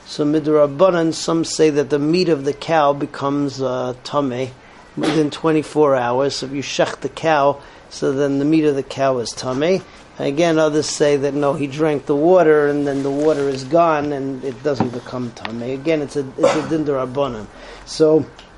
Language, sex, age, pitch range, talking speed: English, male, 40-59, 140-165 Hz, 185 wpm